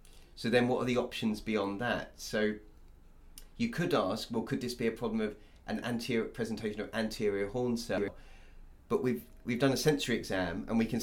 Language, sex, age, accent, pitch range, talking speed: English, male, 30-49, British, 95-115 Hz, 195 wpm